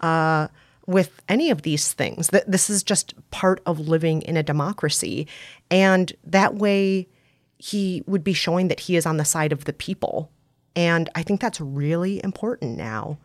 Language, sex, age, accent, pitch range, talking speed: English, female, 30-49, American, 150-185 Hz, 175 wpm